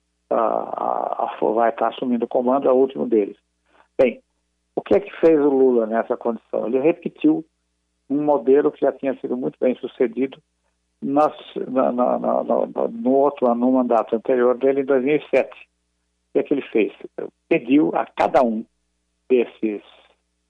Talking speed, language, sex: 165 wpm, Portuguese, male